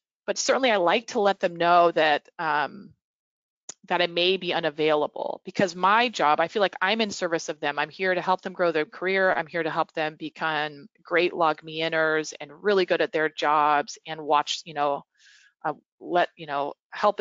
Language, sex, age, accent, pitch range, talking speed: English, female, 30-49, American, 155-185 Hz, 205 wpm